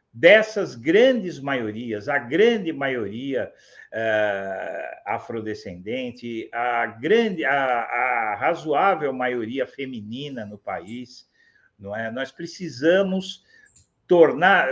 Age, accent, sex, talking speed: 60-79, Brazilian, male, 90 wpm